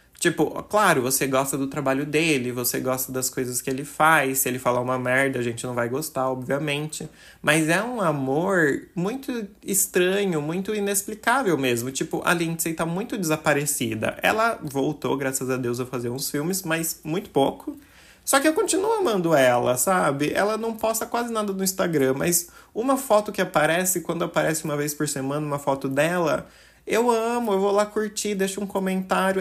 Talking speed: 180 wpm